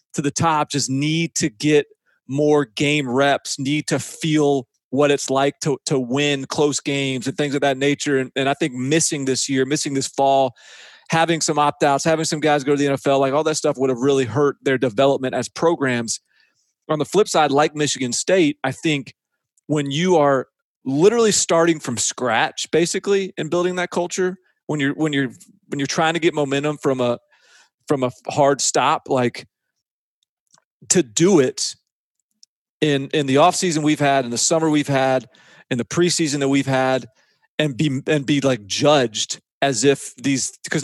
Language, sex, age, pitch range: English, male, 30-49, 135-160 Hz